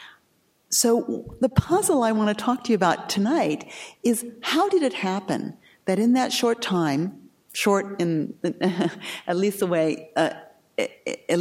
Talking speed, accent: 145 wpm, American